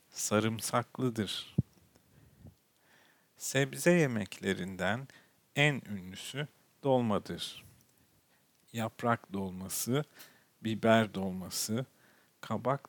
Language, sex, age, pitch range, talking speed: Turkish, male, 50-69, 100-130 Hz, 50 wpm